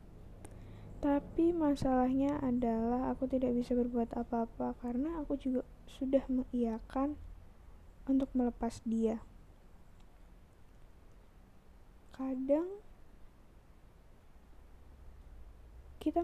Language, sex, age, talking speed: Indonesian, female, 10-29, 65 wpm